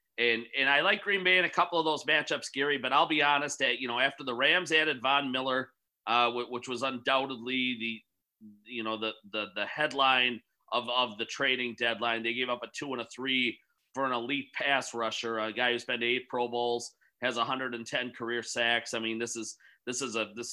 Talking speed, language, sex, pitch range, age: 220 wpm, English, male, 115-140 Hz, 30-49